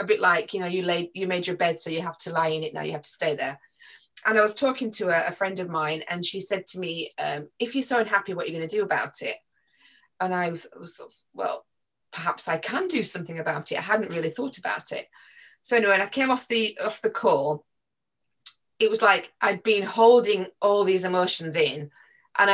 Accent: British